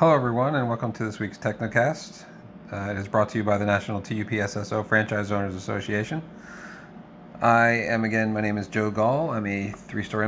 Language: English